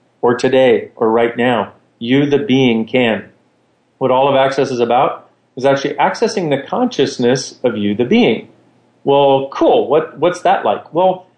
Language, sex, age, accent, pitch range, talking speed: English, male, 40-59, American, 120-170 Hz, 165 wpm